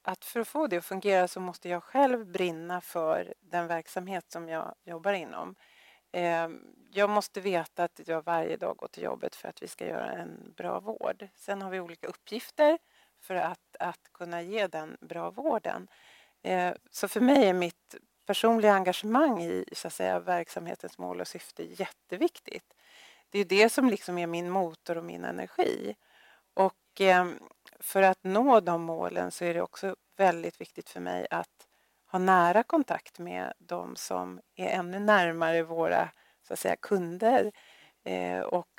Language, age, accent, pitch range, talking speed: English, 40-59, Swedish, 170-205 Hz, 155 wpm